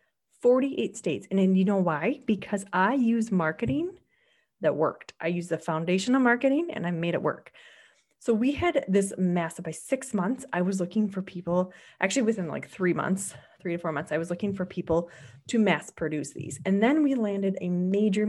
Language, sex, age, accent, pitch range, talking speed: English, female, 30-49, American, 175-230 Hz, 200 wpm